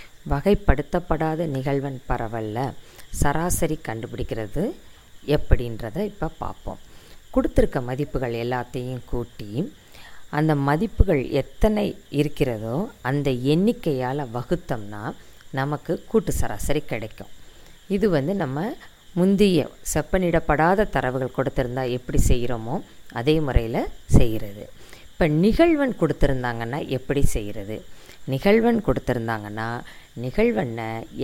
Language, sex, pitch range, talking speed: Tamil, female, 125-170 Hz, 85 wpm